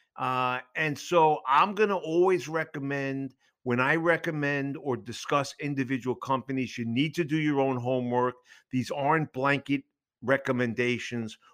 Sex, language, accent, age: male, English, American, 50-69